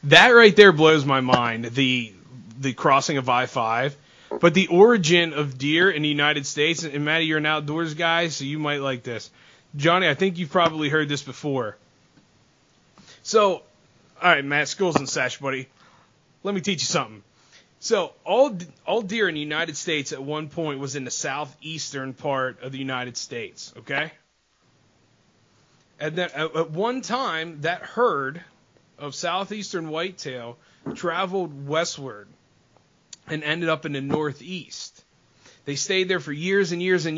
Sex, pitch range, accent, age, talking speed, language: male, 140-180 Hz, American, 30-49, 165 wpm, English